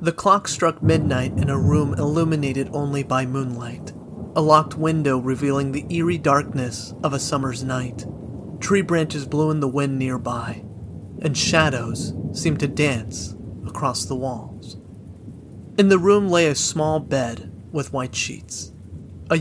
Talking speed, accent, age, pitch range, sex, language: 150 wpm, American, 30-49, 110-160 Hz, male, English